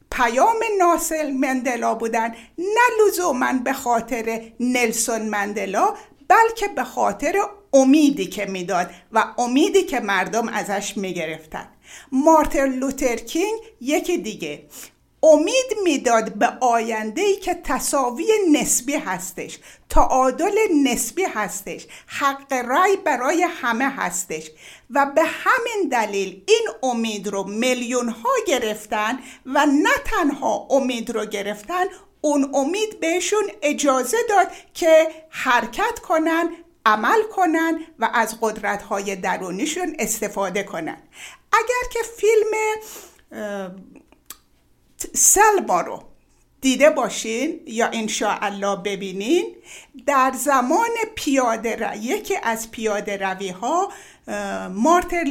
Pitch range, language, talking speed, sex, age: 225-355 Hz, Persian, 110 wpm, female, 50-69